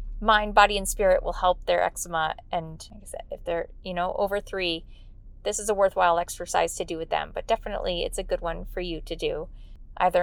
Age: 20-39